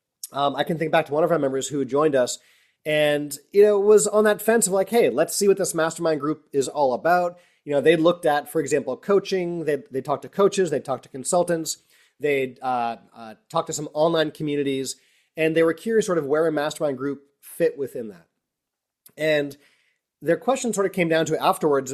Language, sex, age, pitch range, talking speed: English, male, 30-49, 140-180 Hz, 215 wpm